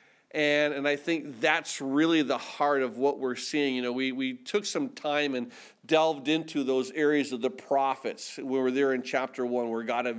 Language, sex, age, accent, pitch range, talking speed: English, male, 50-69, American, 140-170 Hz, 210 wpm